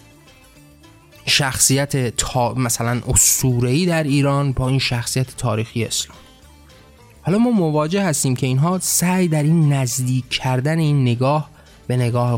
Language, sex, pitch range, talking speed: Persian, male, 125-160 Hz, 125 wpm